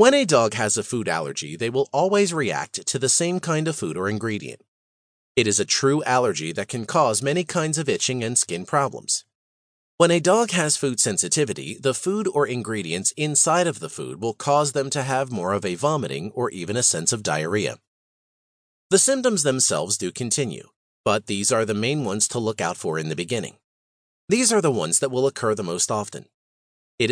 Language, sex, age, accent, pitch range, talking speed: English, male, 40-59, American, 110-150 Hz, 205 wpm